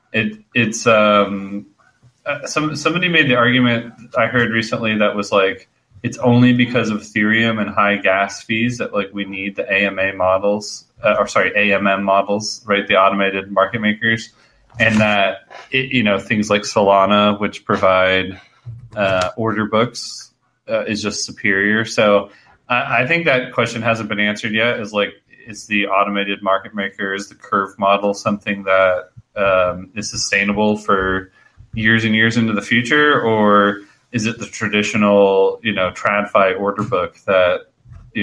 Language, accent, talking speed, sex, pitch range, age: English, American, 160 wpm, male, 95-115 Hz, 20-39